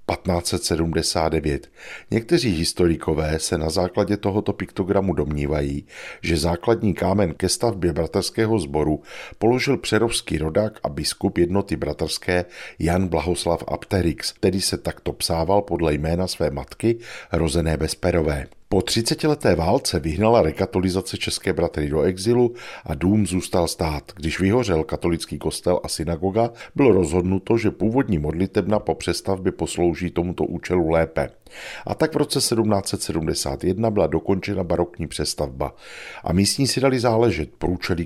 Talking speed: 130 wpm